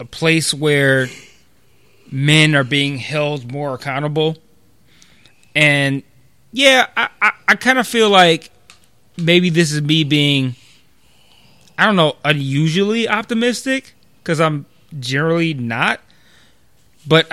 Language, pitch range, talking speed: English, 135-165 Hz, 115 wpm